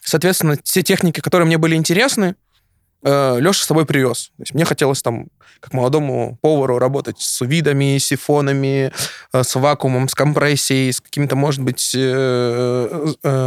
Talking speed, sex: 130 wpm, male